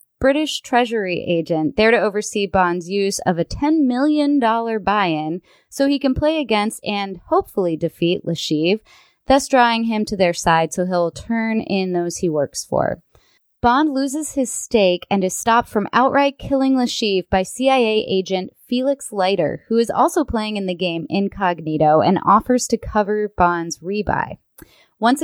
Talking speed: 160 wpm